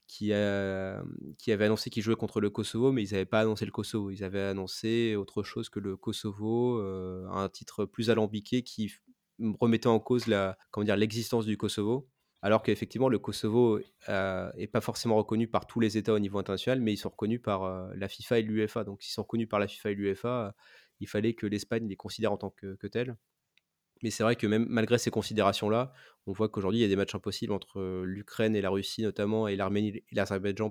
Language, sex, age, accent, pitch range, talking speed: French, male, 20-39, French, 100-115 Hz, 225 wpm